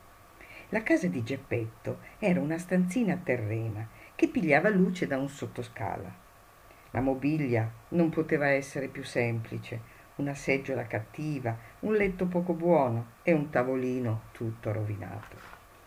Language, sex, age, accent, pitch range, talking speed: Italian, female, 50-69, native, 120-180 Hz, 125 wpm